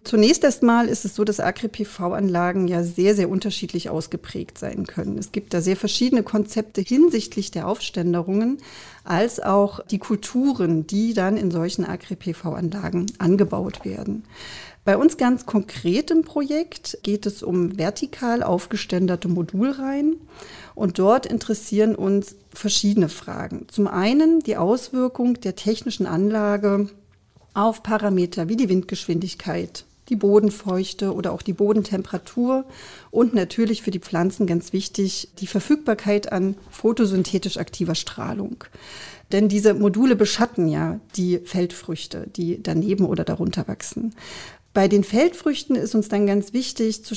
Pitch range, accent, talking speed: 185-220 Hz, German, 130 wpm